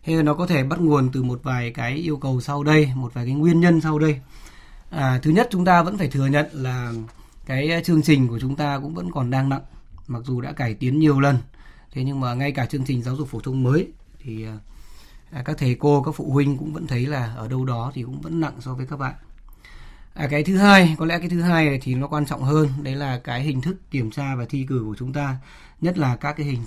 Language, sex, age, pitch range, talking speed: Vietnamese, male, 20-39, 125-155 Hz, 260 wpm